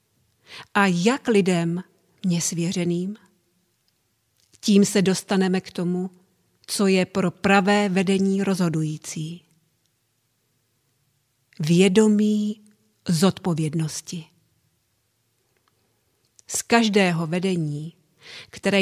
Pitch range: 160-205 Hz